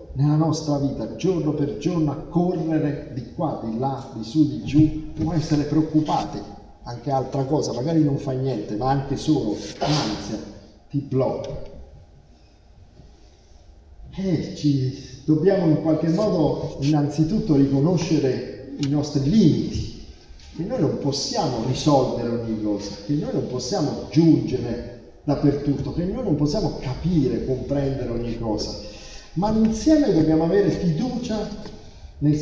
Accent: native